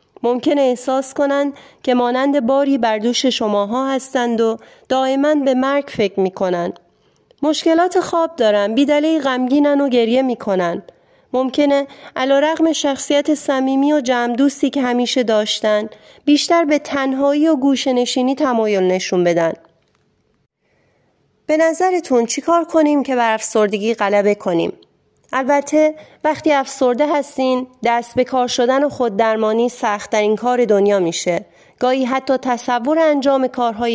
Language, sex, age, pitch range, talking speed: Persian, female, 30-49, 225-285 Hz, 125 wpm